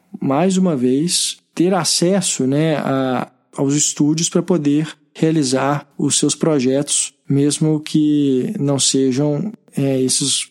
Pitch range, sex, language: 140-180 Hz, male, Portuguese